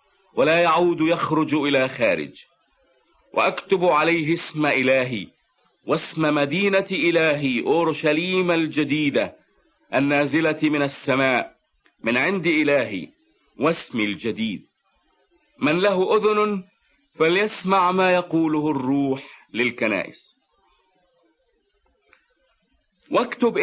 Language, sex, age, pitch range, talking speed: English, male, 50-69, 145-190 Hz, 80 wpm